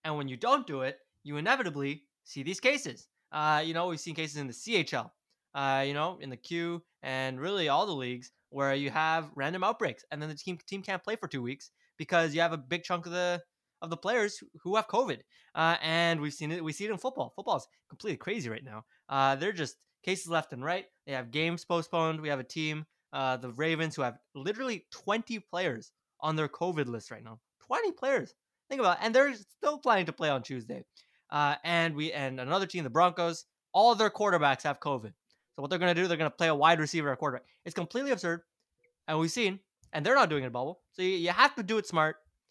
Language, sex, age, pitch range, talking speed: English, male, 20-39, 140-180 Hz, 235 wpm